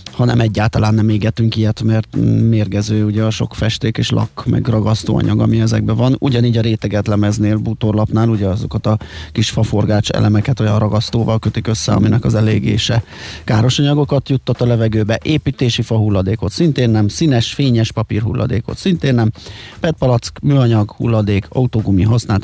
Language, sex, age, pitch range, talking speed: Hungarian, male, 30-49, 105-120 Hz, 145 wpm